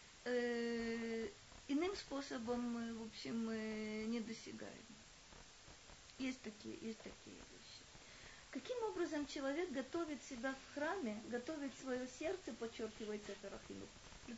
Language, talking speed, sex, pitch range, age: Russian, 110 wpm, female, 230-285 Hz, 20-39